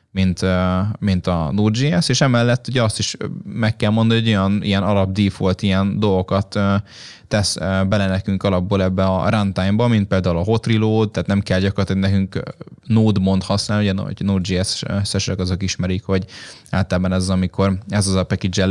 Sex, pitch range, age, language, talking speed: male, 95-105 Hz, 10-29, Hungarian, 165 wpm